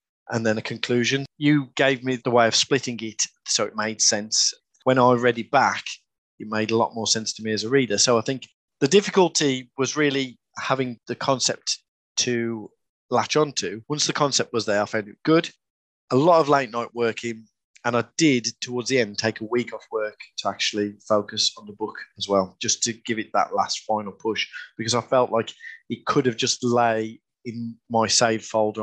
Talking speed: 205 wpm